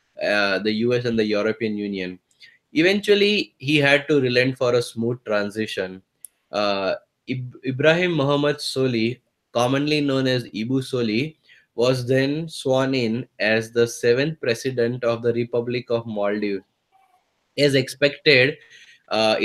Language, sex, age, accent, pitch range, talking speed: English, male, 20-39, Indian, 110-130 Hz, 125 wpm